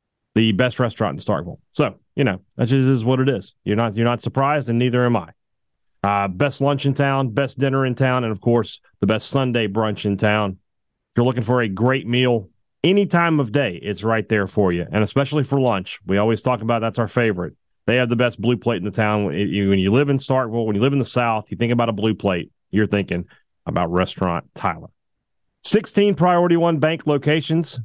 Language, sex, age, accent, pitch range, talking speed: English, male, 30-49, American, 105-135 Hz, 220 wpm